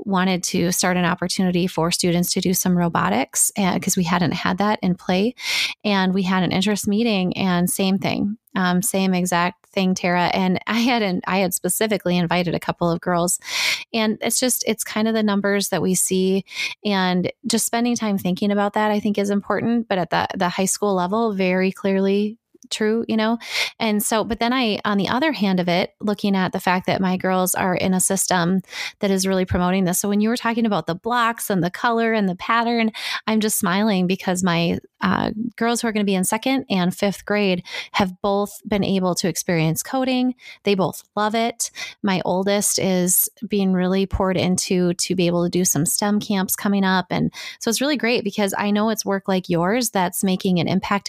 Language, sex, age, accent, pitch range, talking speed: English, female, 20-39, American, 180-215 Hz, 215 wpm